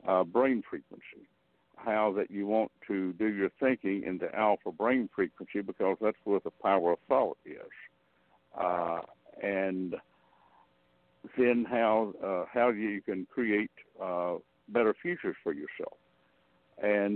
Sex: male